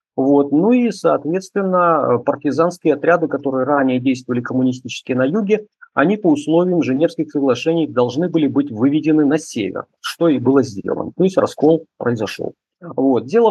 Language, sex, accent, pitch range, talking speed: Russian, male, native, 135-180 Hz, 145 wpm